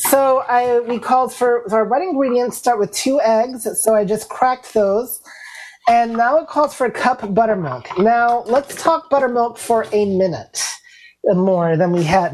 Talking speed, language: 180 wpm, English